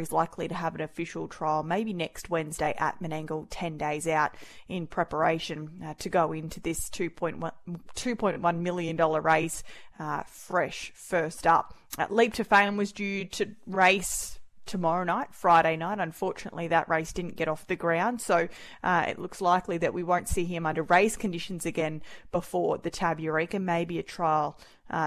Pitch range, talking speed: 160-195 Hz, 170 wpm